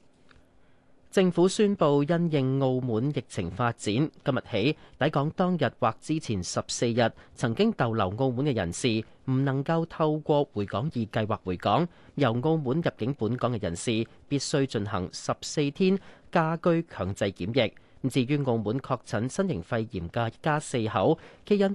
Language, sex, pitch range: Chinese, male, 110-155 Hz